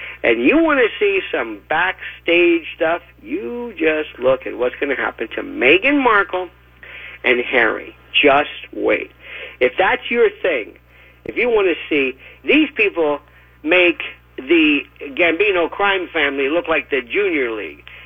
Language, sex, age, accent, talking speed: English, male, 50-69, American, 145 wpm